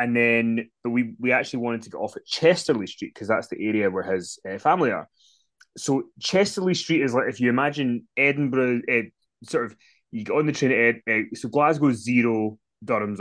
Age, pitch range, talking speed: 20-39, 110-135 Hz, 210 wpm